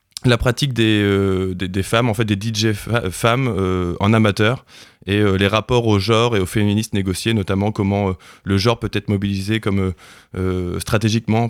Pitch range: 95-115 Hz